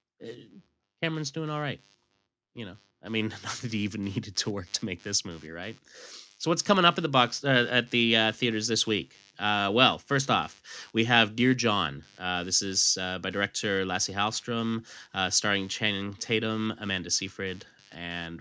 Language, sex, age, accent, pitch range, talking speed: English, male, 30-49, American, 90-115 Hz, 175 wpm